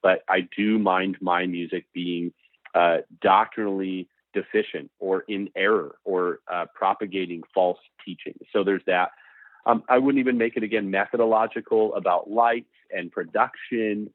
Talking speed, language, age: 140 wpm, English, 40-59